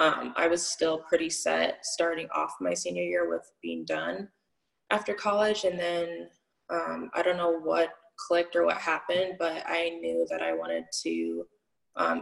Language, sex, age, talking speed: English, female, 20-39, 170 wpm